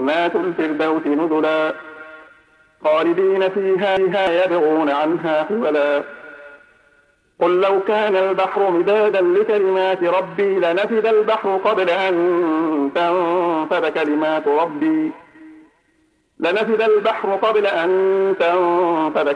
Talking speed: 80 wpm